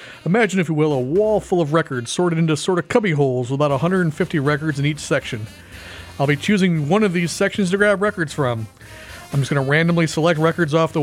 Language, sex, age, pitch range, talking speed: English, male, 40-59, 135-175 Hz, 230 wpm